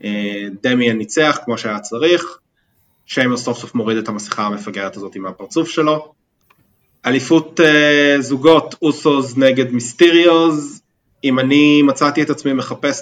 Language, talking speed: Hebrew, 130 wpm